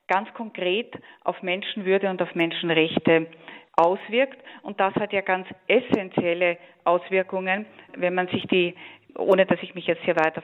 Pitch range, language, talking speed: 175-200 Hz, German, 150 wpm